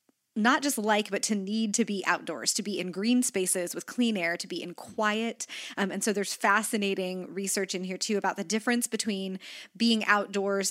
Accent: American